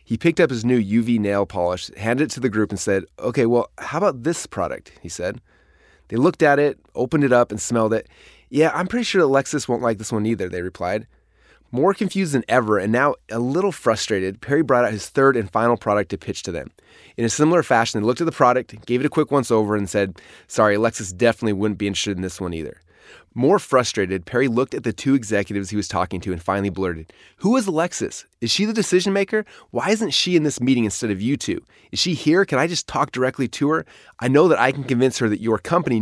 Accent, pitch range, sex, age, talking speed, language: American, 105-145 Hz, male, 20-39, 240 wpm, English